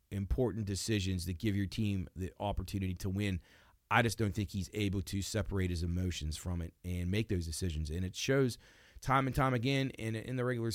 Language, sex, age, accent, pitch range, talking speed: English, male, 30-49, American, 95-120 Hz, 205 wpm